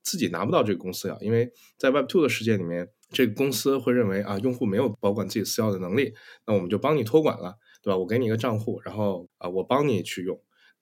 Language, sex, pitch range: Chinese, male, 95-125 Hz